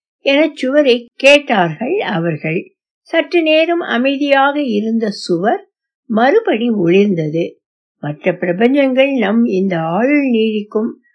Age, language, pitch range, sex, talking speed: 60-79, Tamil, 205-300 Hz, female, 80 wpm